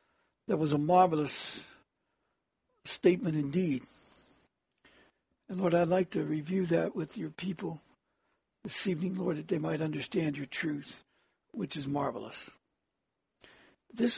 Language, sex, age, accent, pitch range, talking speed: English, male, 60-79, American, 135-185 Hz, 125 wpm